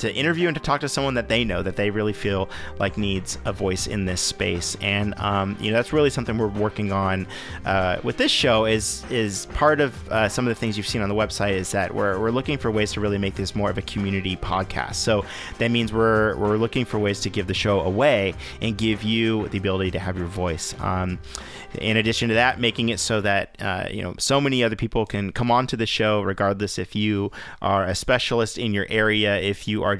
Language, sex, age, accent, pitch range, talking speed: English, male, 30-49, American, 100-120 Hz, 245 wpm